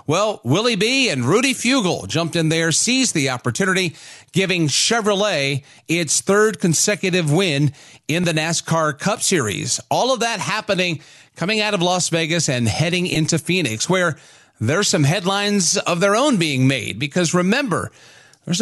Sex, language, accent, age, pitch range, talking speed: male, English, American, 40-59, 145-195 Hz, 155 wpm